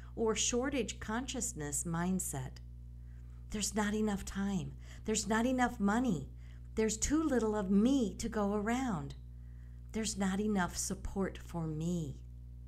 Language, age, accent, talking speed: English, 50-69, American, 125 wpm